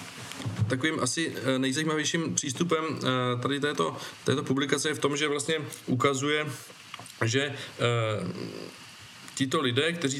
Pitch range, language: 120-135 Hz, Czech